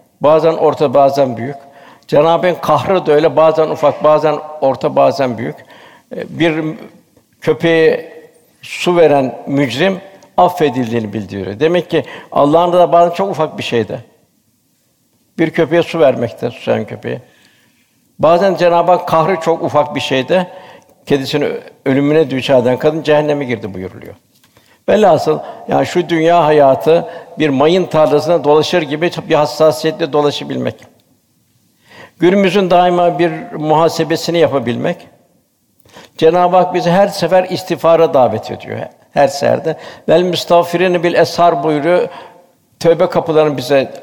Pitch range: 145-170 Hz